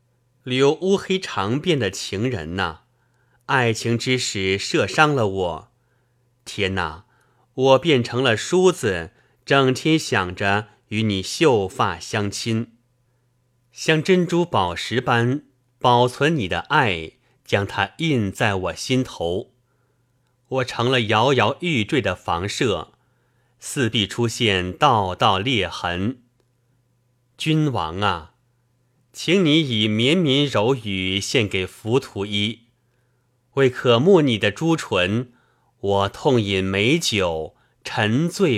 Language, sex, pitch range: Chinese, male, 105-130 Hz